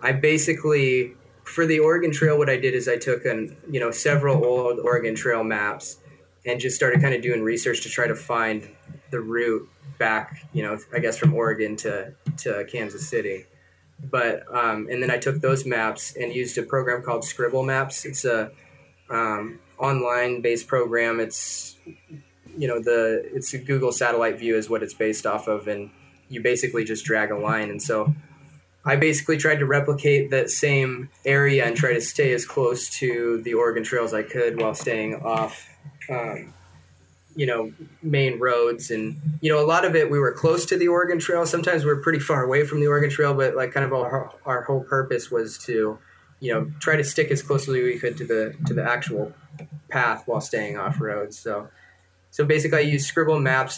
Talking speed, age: 195 wpm, 20-39